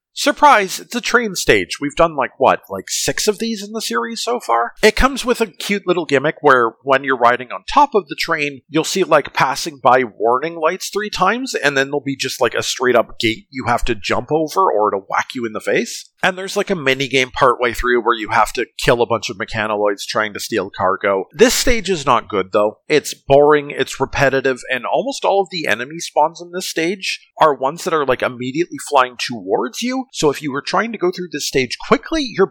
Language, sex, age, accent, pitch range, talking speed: English, male, 40-59, American, 130-195 Hz, 230 wpm